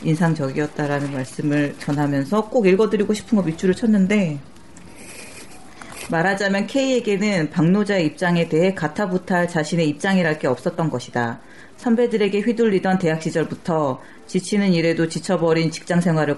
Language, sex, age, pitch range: Korean, female, 40-59, 155-200 Hz